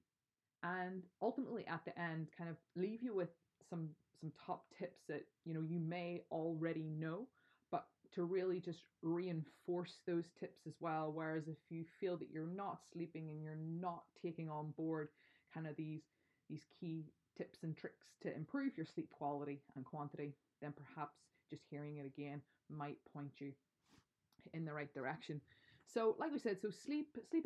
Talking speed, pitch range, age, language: 175 wpm, 150-180 Hz, 20-39, English